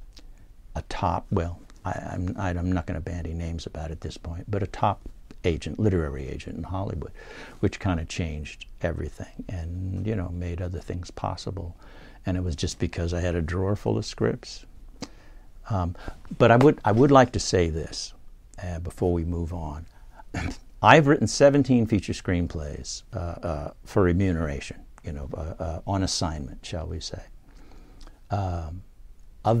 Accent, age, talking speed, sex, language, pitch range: American, 60-79, 170 wpm, male, English, 85-105 Hz